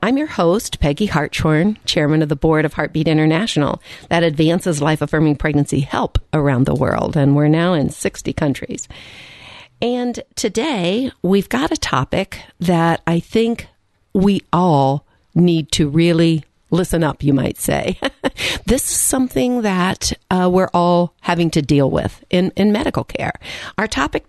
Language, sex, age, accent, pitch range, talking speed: English, female, 50-69, American, 150-205 Hz, 155 wpm